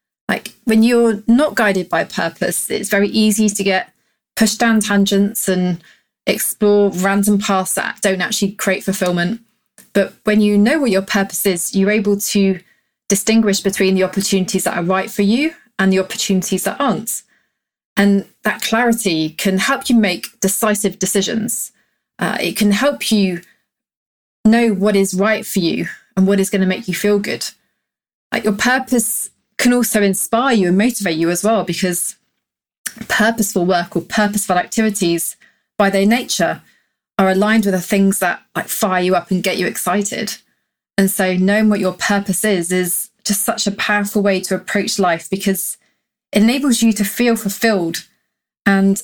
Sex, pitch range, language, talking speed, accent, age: female, 190-220 Hz, English, 170 wpm, British, 30-49